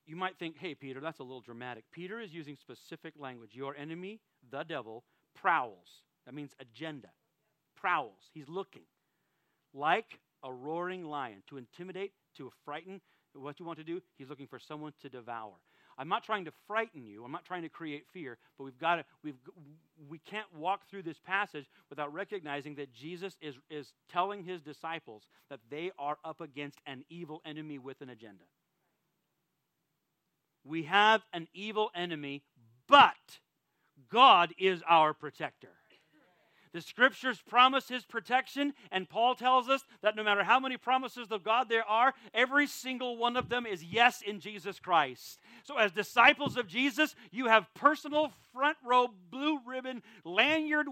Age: 40-59